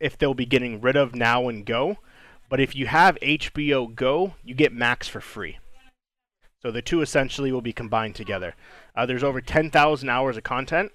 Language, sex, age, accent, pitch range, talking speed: English, male, 20-39, American, 120-150 Hz, 190 wpm